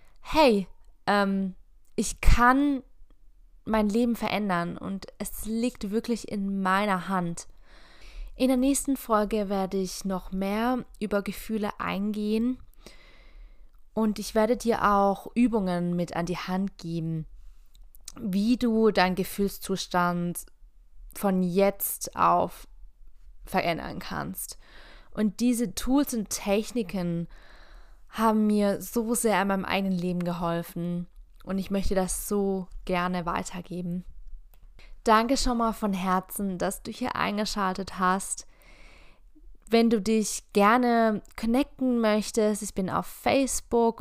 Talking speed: 115 wpm